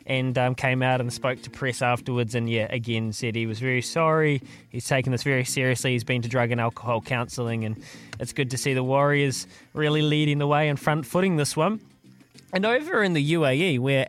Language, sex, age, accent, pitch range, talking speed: English, male, 20-39, Australian, 125-155 Hz, 215 wpm